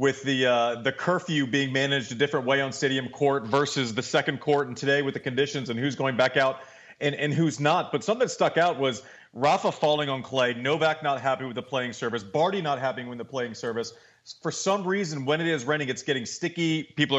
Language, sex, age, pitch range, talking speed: English, male, 30-49, 135-160 Hz, 230 wpm